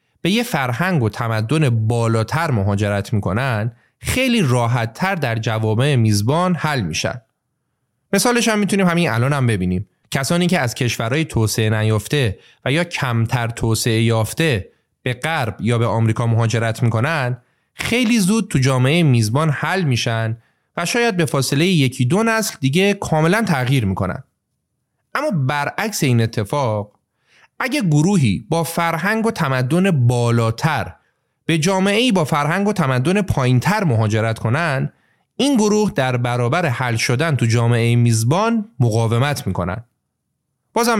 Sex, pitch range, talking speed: male, 115-170 Hz, 135 wpm